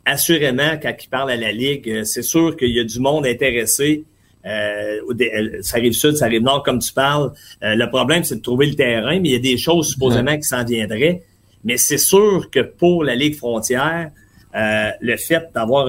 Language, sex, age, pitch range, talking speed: French, male, 30-49, 115-155 Hz, 210 wpm